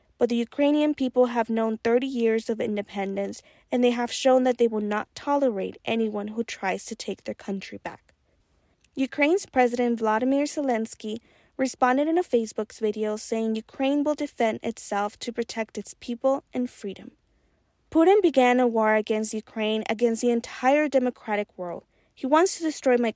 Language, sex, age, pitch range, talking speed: English, female, 20-39, 215-265 Hz, 165 wpm